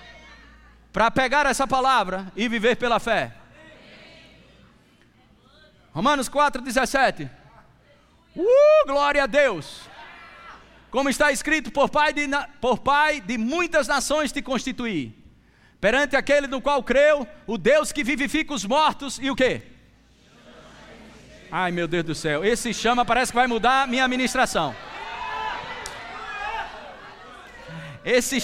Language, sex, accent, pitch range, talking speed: Portuguese, male, Brazilian, 255-300 Hz, 110 wpm